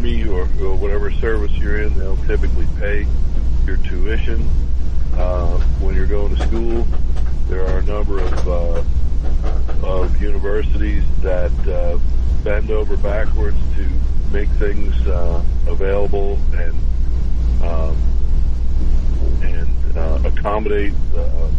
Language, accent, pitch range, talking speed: English, American, 65-75 Hz, 115 wpm